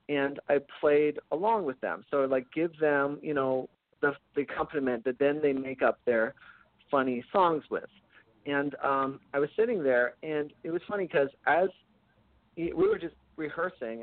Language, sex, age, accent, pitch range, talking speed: English, male, 40-59, American, 130-150 Hz, 175 wpm